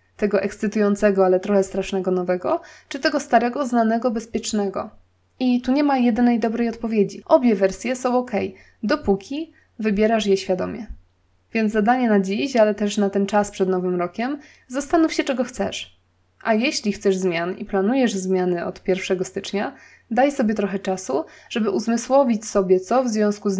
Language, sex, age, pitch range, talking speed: Polish, female, 20-39, 185-235 Hz, 160 wpm